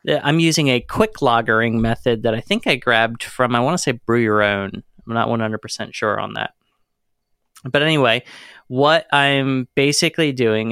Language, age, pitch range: English, 20-39, 115-140 Hz